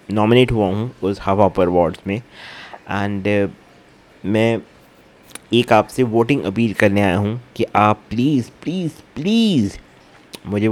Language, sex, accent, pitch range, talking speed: English, male, Indian, 100-120 Hz, 100 wpm